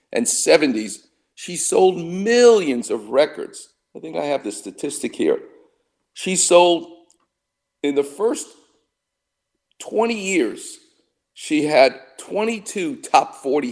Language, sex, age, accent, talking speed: English, male, 50-69, American, 115 wpm